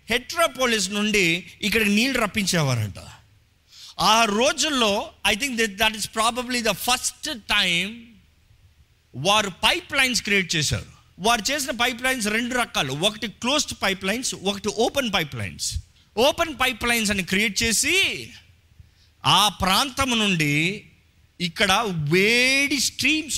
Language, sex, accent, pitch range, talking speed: Telugu, male, native, 175-245 Hz, 120 wpm